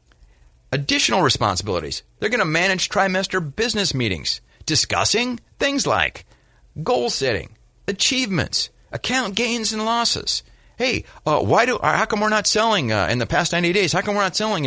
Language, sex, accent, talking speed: English, male, American, 160 wpm